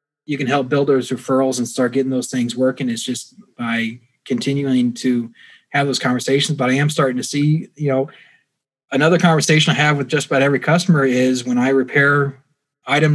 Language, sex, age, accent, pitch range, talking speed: English, male, 20-39, American, 135-165 Hz, 190 wpm